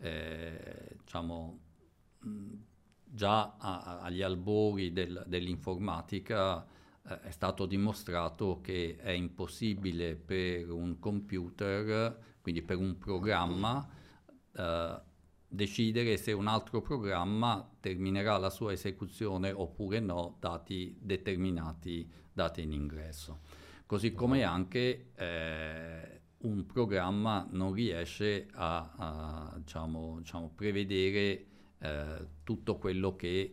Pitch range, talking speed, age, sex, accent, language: 85-100 Hz, 95 wpm, 50-69, male, native, Italian